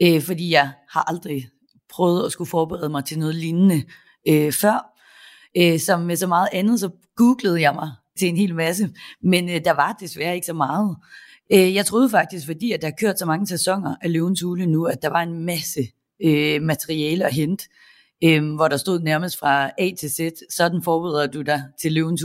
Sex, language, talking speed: female, English, 200 wpm